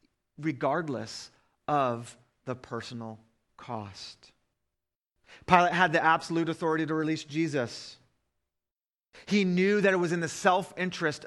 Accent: American